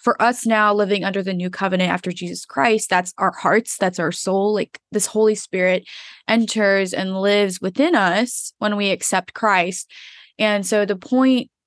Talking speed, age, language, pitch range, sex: 175 wpm, 20-39, English, 185-220 Hz, female